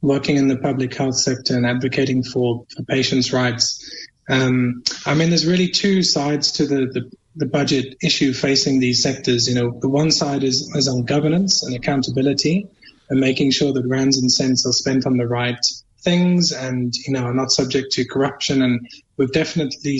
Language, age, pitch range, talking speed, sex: English, 20-39, 125-145 Hz, 185 wpm, male